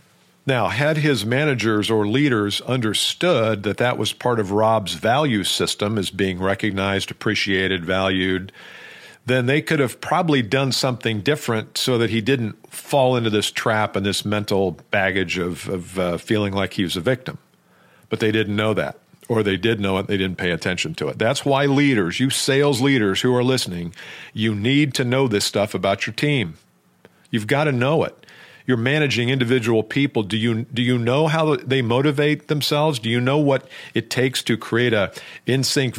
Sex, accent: male, American